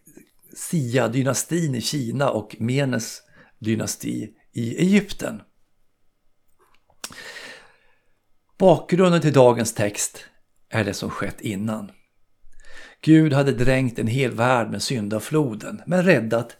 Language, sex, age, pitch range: Swedish, male, 60-79, 105-140 Hz